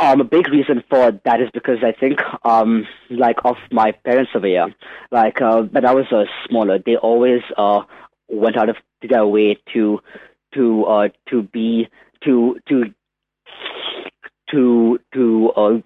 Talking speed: 150 wpm